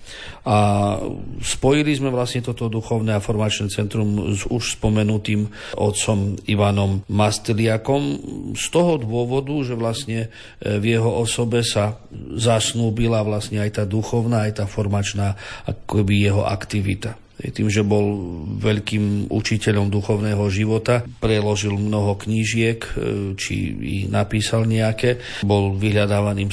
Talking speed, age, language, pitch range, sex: 115 wpm, 40-59, Slovak, 100-110 Hz, male